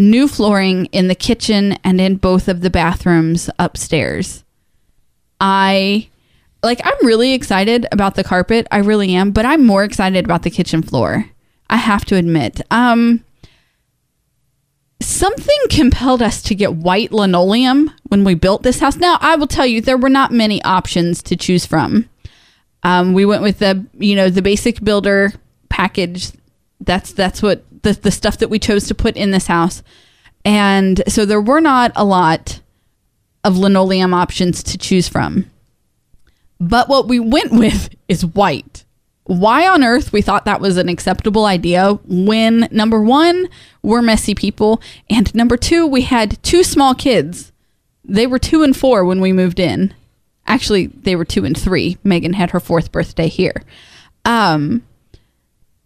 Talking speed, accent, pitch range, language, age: 165 wpm, American, 185-230 Hz, English, 20-39